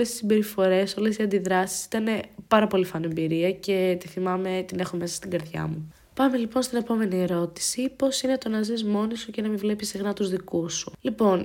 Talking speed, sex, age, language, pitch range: 210 wpm, female, 20-39, Greek, 175-220 Hz